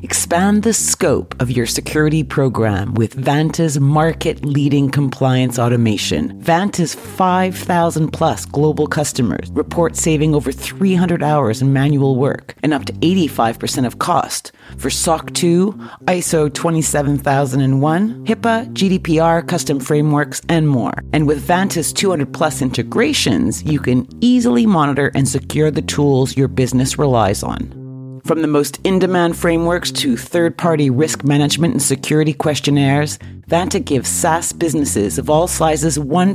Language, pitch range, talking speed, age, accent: English, 135-170 Hz, 130 wpm, 40-59, American